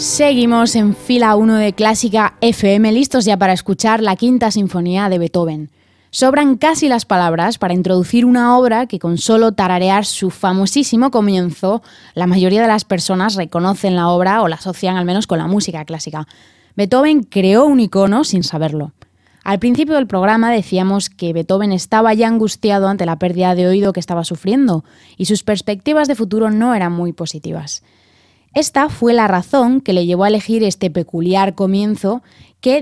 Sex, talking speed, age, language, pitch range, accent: female, 170 wpm, 20-39, Spanish, 175-225 Hz, Spanish